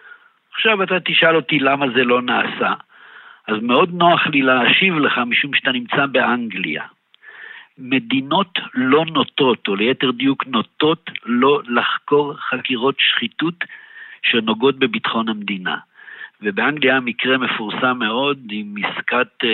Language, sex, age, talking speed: Hebrew, male, 60-79, 115 wpm